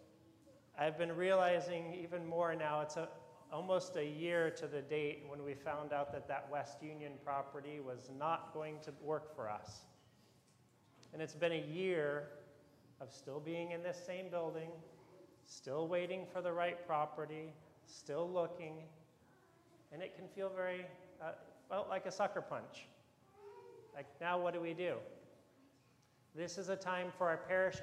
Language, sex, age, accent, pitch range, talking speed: English, male, 40-59, American, 150-180 Hz, 160 wpm